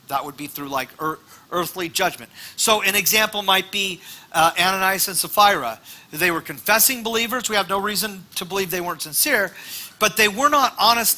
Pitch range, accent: 170-225 Hz, American